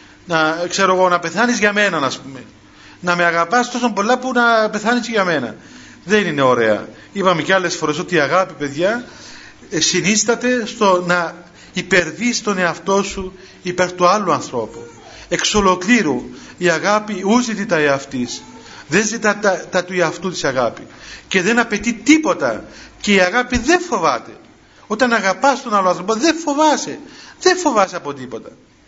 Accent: native